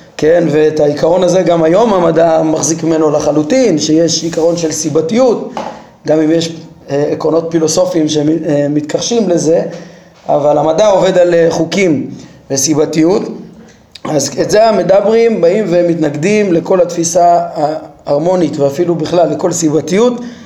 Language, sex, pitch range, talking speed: Hebrew, male, 155-190 Hz, 115 wpm